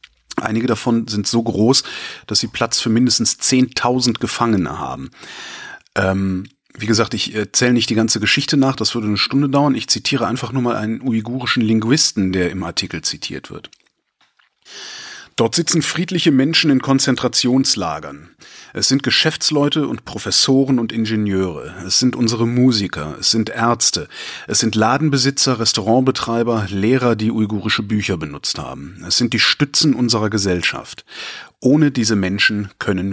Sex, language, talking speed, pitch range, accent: male, German, 145 wpm, 100-135 Hz, German